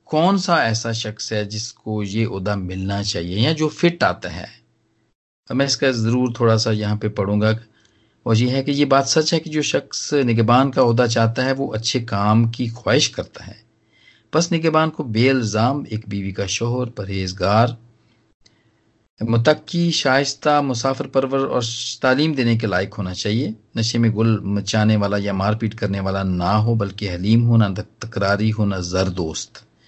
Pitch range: 105-130 Hz